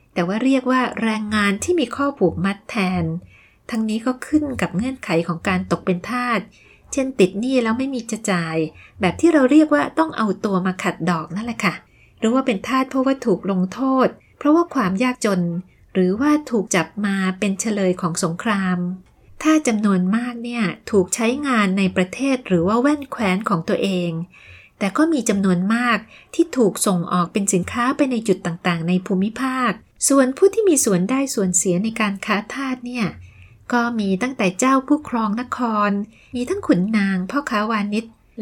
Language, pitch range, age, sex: Thai, 185-255 Hz, 30-49, female